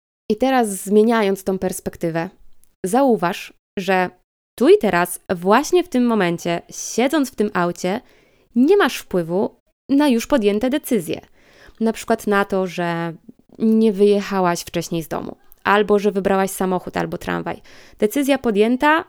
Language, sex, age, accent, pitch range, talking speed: Polish, female, 20-39, native, 195-250 Hz, 135 wpm